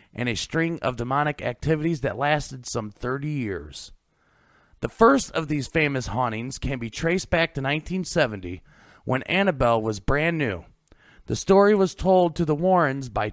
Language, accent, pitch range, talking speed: English, American, 120-170 Hz, 160 wpm